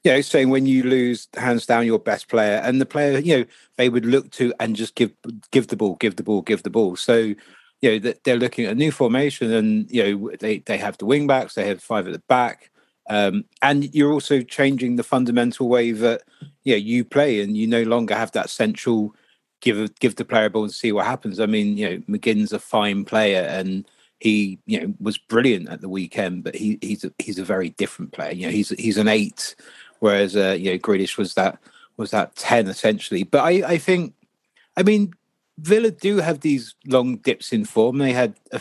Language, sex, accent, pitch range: English, male, British, 110-140 Hz